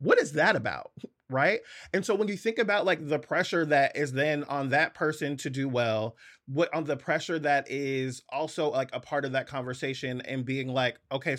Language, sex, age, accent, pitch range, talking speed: English, male, 30-49, American, 125-165 Hz, 210 wpm